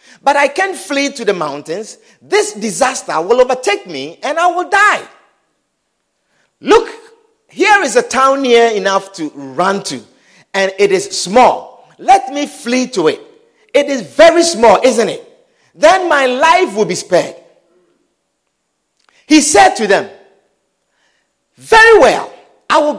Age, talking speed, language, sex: 50-69, 145 wpm, English, male